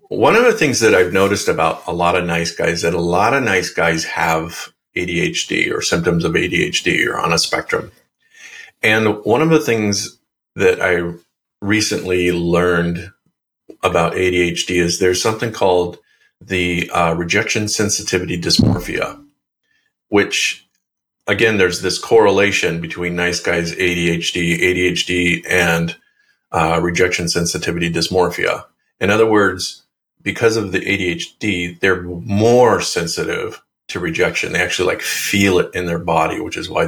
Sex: male